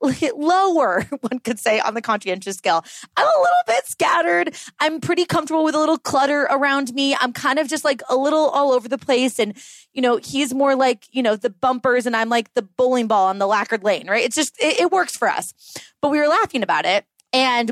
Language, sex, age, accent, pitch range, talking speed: English, female, 20-39, American, 195-270 Hz, 230 wpm